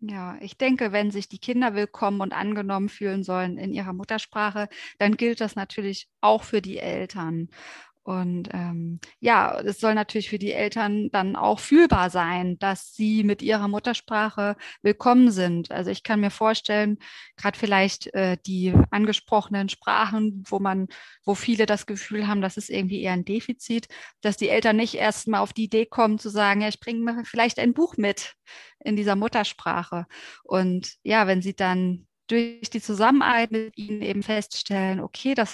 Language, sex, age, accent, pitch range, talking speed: German, female, 30-49, German, 190-220 Hz, 175 wpm